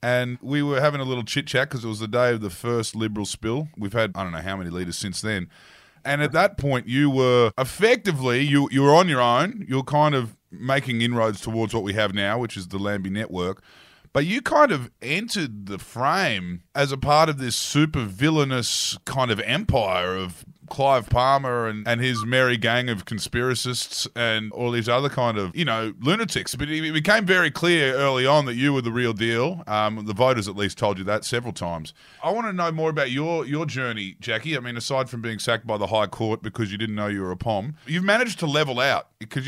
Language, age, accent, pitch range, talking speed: English, 20-39, Australian, 110-145 Hz, 225 wpm